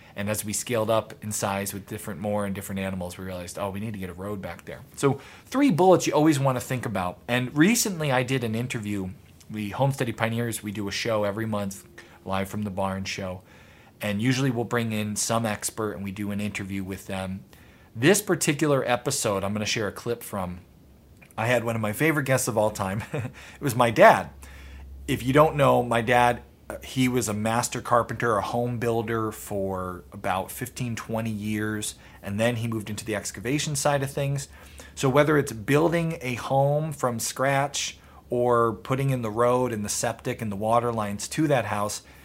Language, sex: English, male